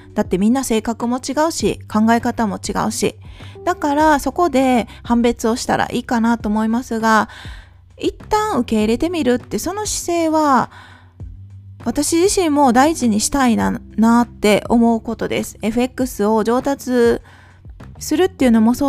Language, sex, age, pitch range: Japanese, female, 20-39, 210-290 Hz